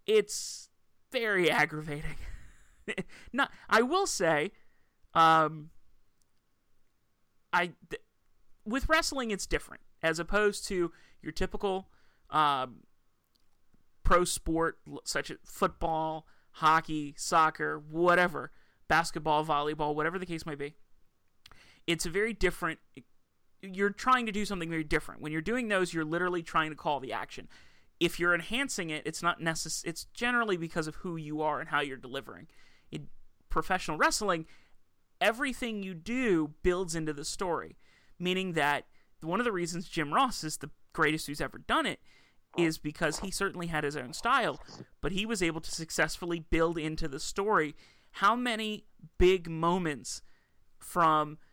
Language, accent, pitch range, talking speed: English, American, 150-185 Hz, 145 wpm